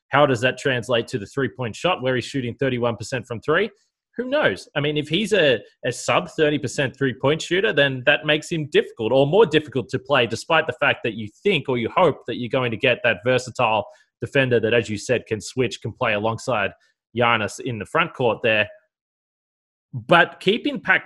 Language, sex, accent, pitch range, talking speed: English, male, Australian, 115-150 Hz, 210 wpm